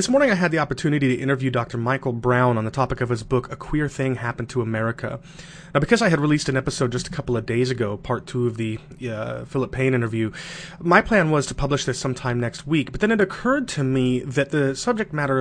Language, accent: English, American